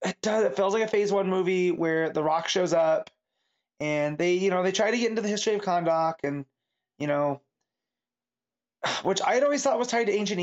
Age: 20-39